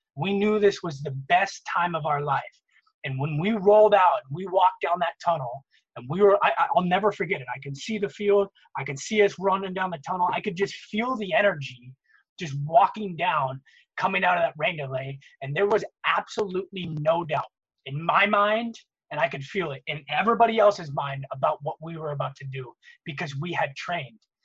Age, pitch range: 20-39, 145-200 Hz